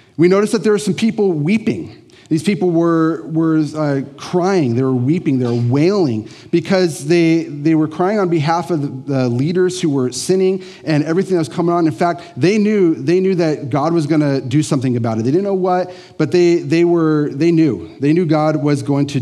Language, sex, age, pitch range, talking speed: English, male, 30-49, 135-175 Hz, 220 wpm